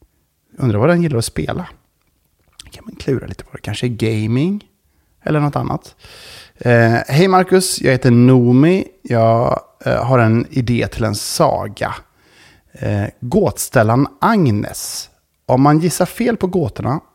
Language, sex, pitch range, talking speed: Swedish, male, 105-150 Hz, 140 wpm